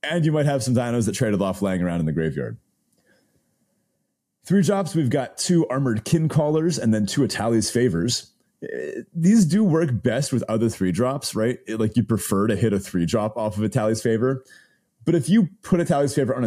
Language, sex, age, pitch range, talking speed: English, male, 30-49, 105-140 Hz, 205 wpm